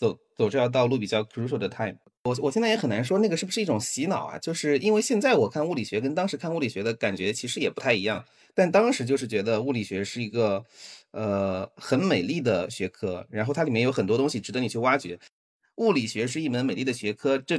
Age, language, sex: 30-49, Chinese, male